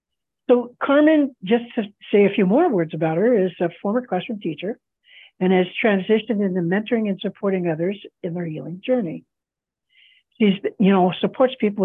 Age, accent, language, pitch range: 60-79, American, English, 175-230 Hz